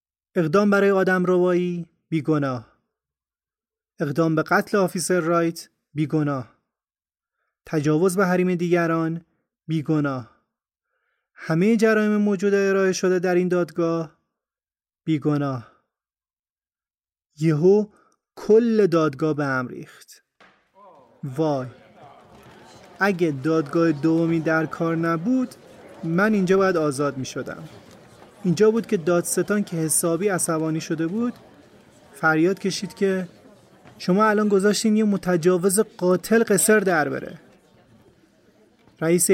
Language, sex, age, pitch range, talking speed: Persian, male, 30-49, 160-195 Hz, 100 wpm